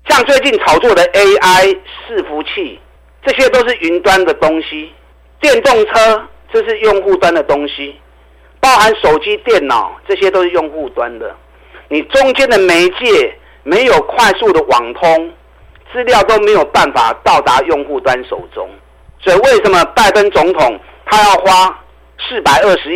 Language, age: Chinese, 50-69